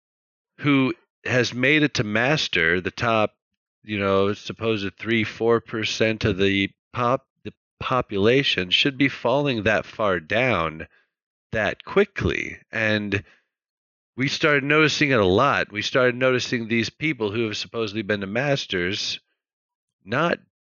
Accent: American